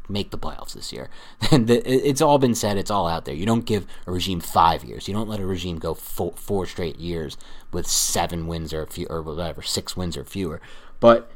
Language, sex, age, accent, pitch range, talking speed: English, male, 30-49, American, 90-120 Hz, 240 wpm